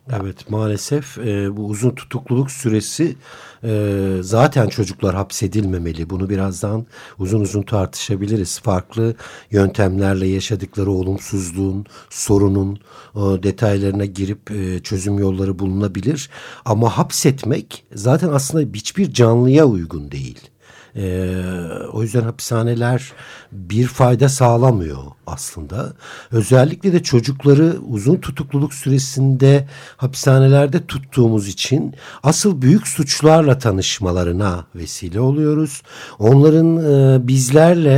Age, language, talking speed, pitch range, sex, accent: 60-79, Turkish, 100 wpm, 100-140 Hz, male, native